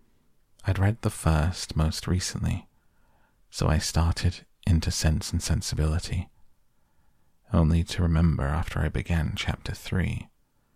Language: English